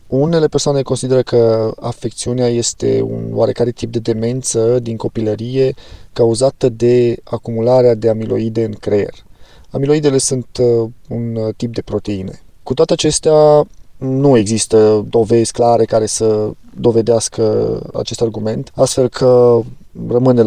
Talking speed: 120 wpm